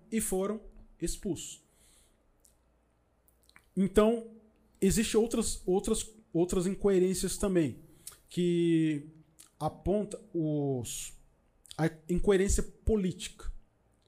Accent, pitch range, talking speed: Brazilian, 150-190 Hz, 60 wpm